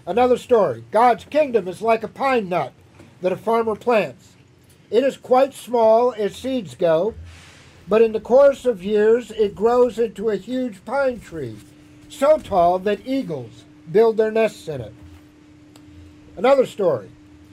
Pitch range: 150-235 Hz